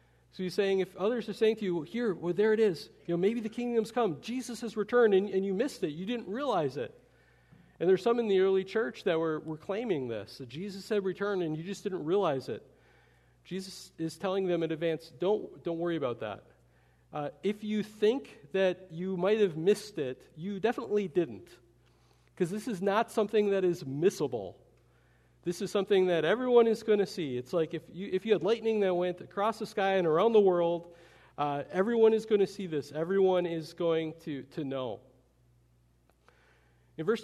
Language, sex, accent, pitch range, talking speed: English, male, American, 150-200 Hz, 205 wpm